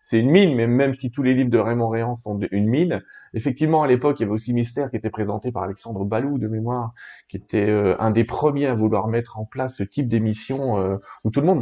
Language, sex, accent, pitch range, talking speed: French, male, French, 110-140 Hz, 260 wpm